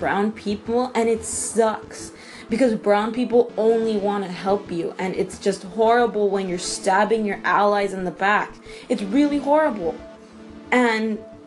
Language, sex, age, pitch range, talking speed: English, female, 20-39, 205-255 Hz, 150 wpm